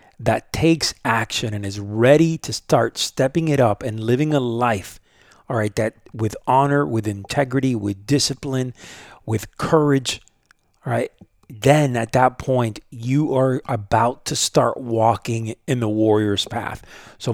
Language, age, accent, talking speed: English, 40-59, American, 150 wpm